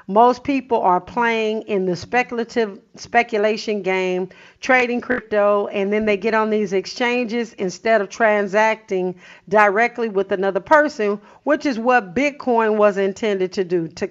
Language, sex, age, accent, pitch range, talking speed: English, female, 50-69, American, 190-240 Hz, 145 wpm